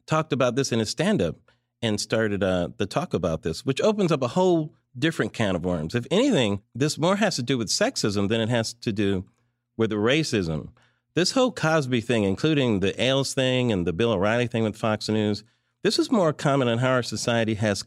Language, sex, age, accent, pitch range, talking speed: English, male, 40-59, American, 105-155 Hz, 210 wpm